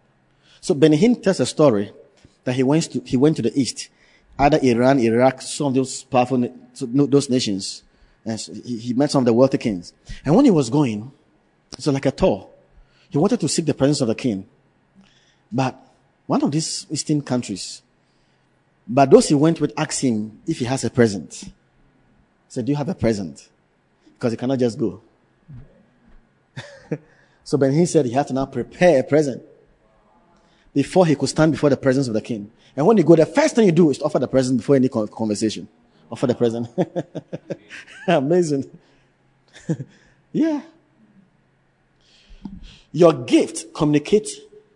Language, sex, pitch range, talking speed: English, male, 125-175 Hz, 170 wpm